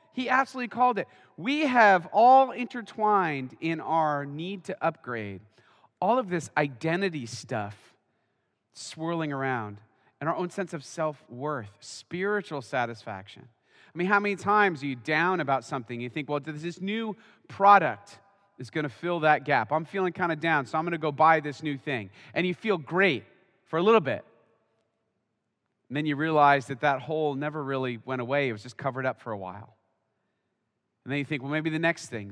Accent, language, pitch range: American, English, 120-170 Hz